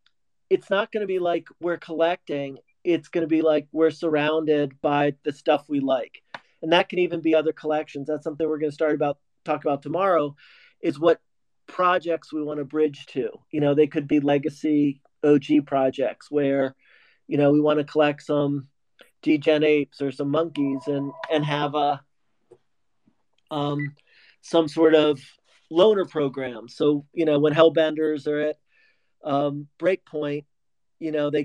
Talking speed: 170 wpm